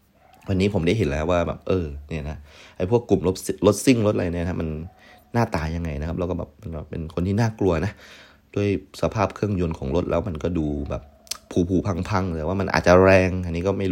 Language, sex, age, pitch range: Thai, male, 30-49, 80-95 Hz